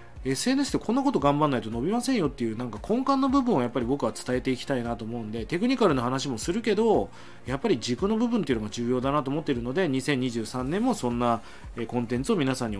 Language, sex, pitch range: Japanese, male, 120-175 Hz